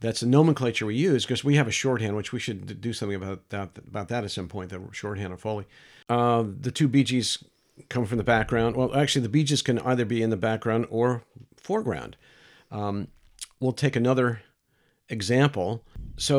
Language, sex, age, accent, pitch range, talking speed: English, male, 50-69, American, 105-130 Hz, 200 wpm